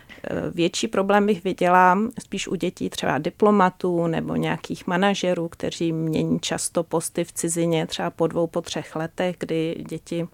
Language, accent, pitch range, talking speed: Czech, native, 155-175 Hz, 150 wpm